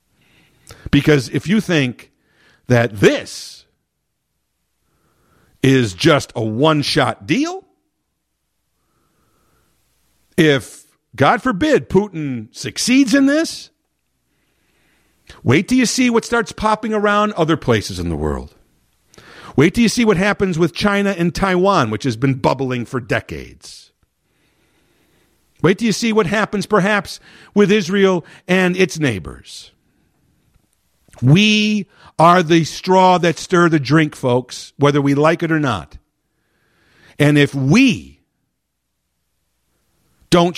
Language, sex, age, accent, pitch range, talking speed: English, male, 50-69, American, 125-195 Hz, 115 wpm